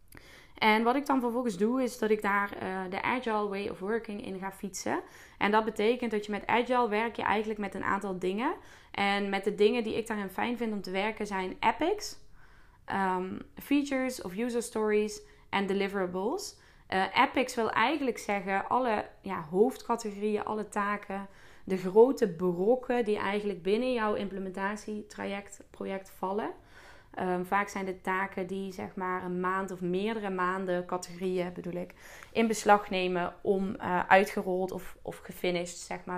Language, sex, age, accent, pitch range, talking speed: Dutch, female, 20-39, Dutch, 185-220 Hz, 160 wpm